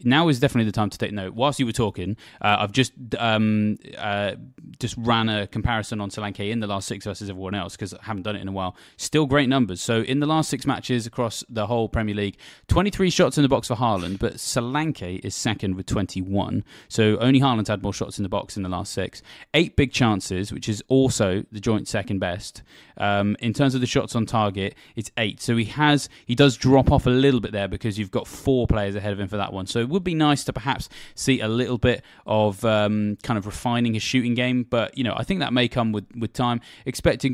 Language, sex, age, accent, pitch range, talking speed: English, male, 20-39, British, 100-125 Hz, 240 wpm